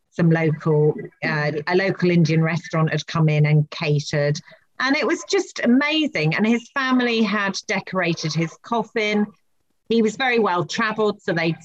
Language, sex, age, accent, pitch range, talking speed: English, female, 40-59, British, 155-195 Hz, 155 wpm